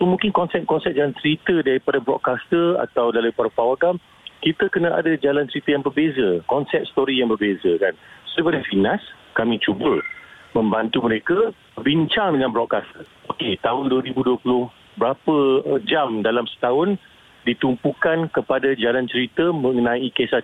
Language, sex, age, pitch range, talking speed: Malay, male, 50-69, 120-170 Hz, 125 wpm